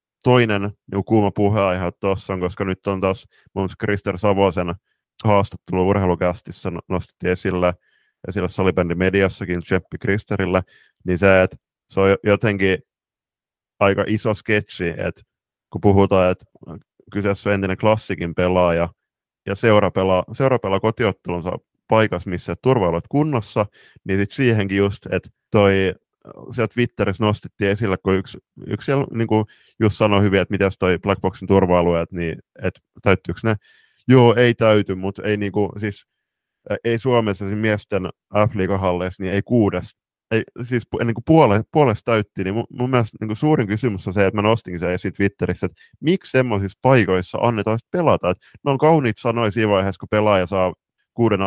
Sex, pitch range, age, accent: male, 95-110 Hz, 30-49, native